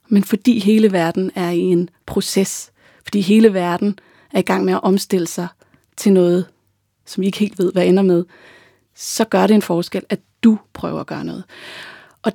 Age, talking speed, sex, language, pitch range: 30-49, 195 wpm, female, Danish, 175-210 Hz